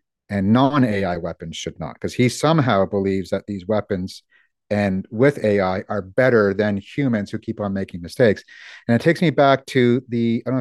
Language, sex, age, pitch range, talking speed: English, male, 50-69, 105-120 Hz, 190 wpm